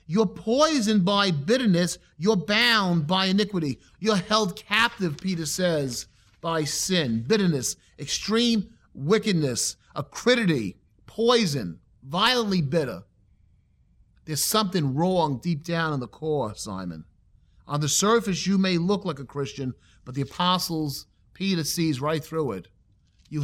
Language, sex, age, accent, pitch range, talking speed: English, male, 40-59, American, 110-175 Hz, 125 wpm